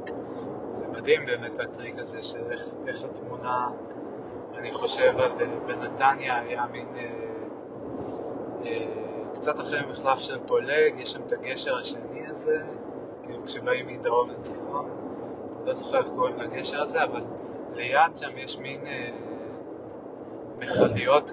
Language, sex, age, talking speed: Hebrew, male, 30-49, 120 wpm